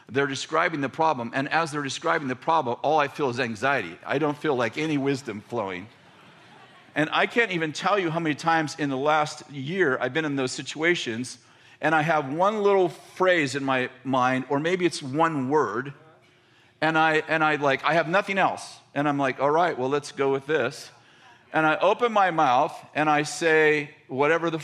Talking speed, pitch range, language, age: 200 wpm, 140-180 Hz, English, 50-69